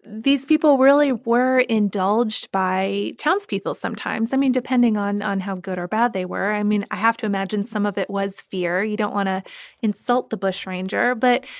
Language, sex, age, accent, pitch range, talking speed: English, female, 20-39, American, 195-245 Hz, 195 wpm